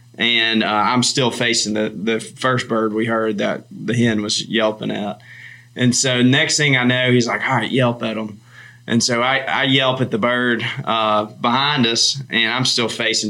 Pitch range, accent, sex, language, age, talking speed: 110-125 Hz, American, male, English, 20-39, 205 wpm